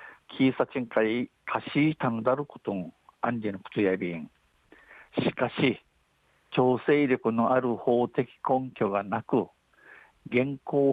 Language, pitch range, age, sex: Japanese, 115-135 Hz, 60-79, male